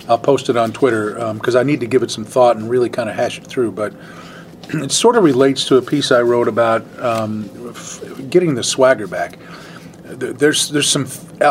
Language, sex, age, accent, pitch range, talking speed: English, male, 40-59, American, 115-145 Hz, 215 wpm